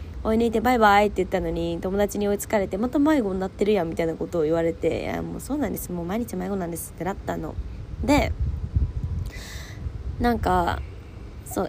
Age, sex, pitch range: 20-39, female, 135-225 Hz